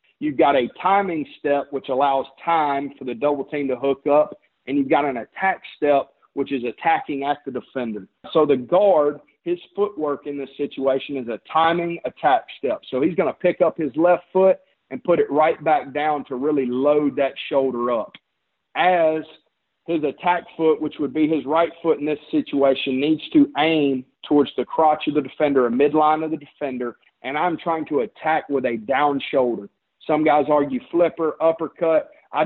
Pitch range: 140-160 Hz